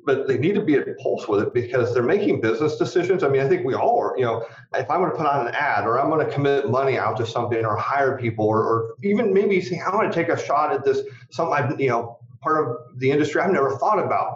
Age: 30-49